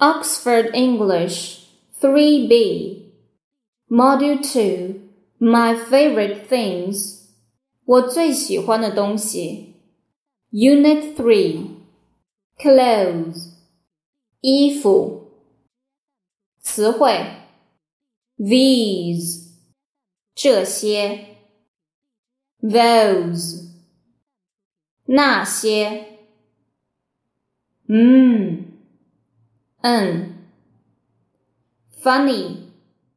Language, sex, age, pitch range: Chinese, female, 10-29, 180-265 Hz